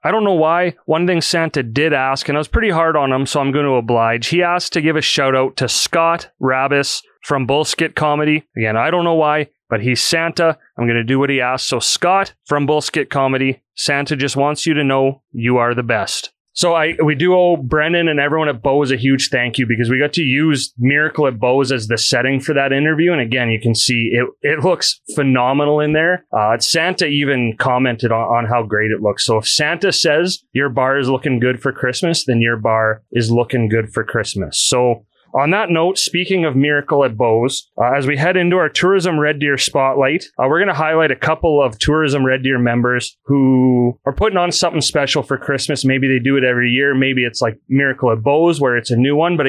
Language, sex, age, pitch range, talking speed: English, male, 30-49, 125-155 Hz, 230 wpm